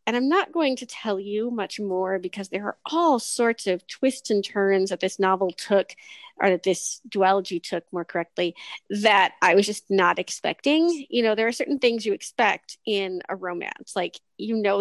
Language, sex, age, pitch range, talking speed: English, female, 30-49, 195-275 Hz, 200 wpm